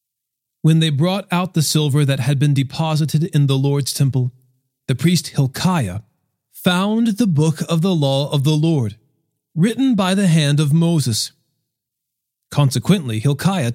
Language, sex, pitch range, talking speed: English, male, 125-165 Hz, 150 wpm